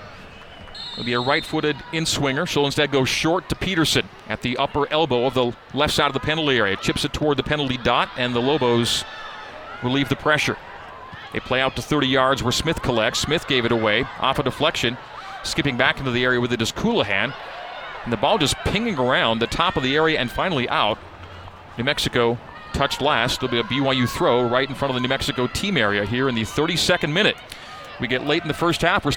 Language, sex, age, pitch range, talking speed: English, male, 40-59, 125-155 Hz, 220 wpm